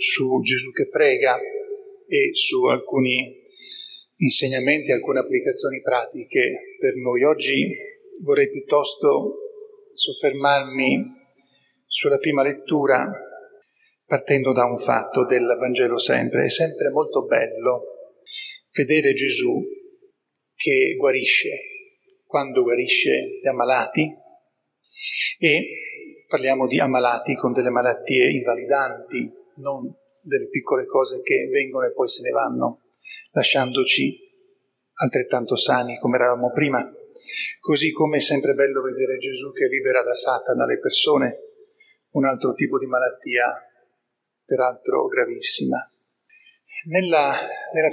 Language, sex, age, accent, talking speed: Italian, male, 40-59, native, 110 wpm